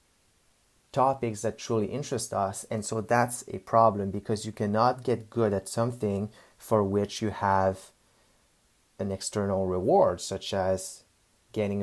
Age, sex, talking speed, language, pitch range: 30-49, male, 135 wpm, English, 100-115 Hz